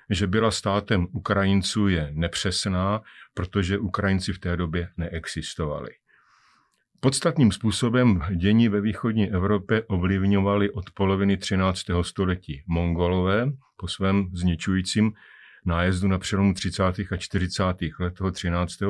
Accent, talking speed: native, 110 wpm